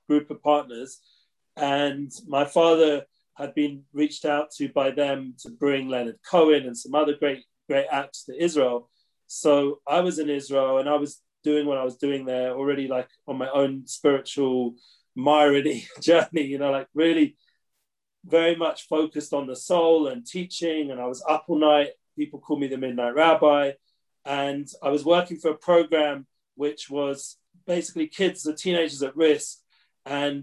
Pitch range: 135-155 Hz